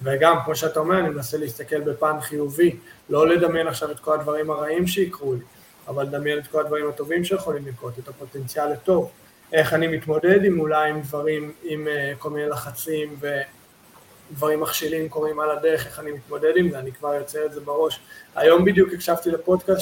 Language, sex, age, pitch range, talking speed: Hebrew, male, 20-39, 150-170 Hz, 185 wpm